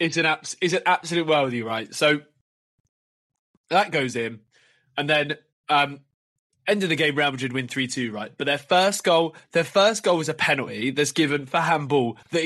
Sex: male